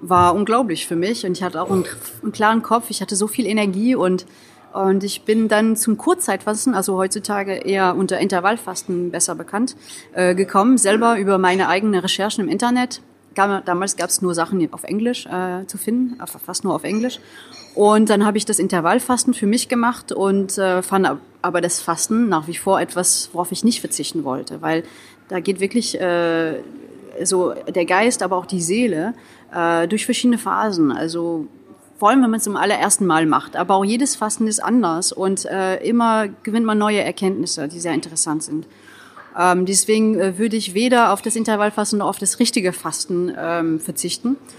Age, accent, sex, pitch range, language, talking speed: 30-49, German, female, 180-225 Hz, German, 185 wpm